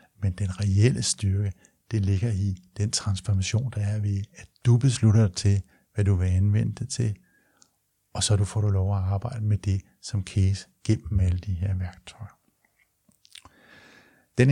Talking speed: 165 wpm